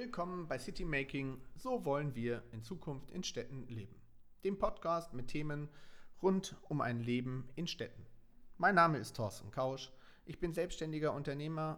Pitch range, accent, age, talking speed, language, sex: 125-160 Hz, German, 40-59, 160 wpm, German, male